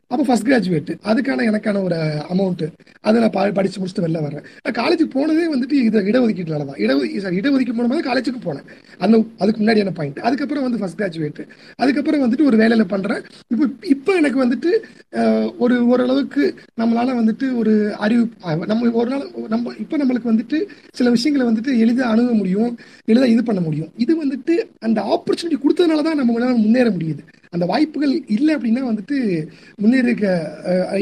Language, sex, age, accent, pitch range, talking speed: Tamil, male, 30-49, native, 180-255 Hz, 155 wpm